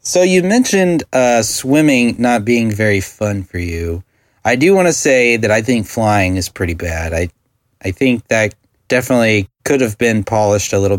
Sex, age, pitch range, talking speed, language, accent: male, 30-49, 95-120 Hz, 185 wpm, English, American